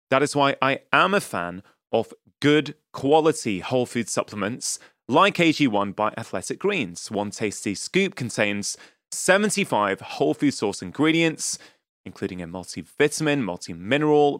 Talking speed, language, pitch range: 130 wpm, English, 105-155 Hz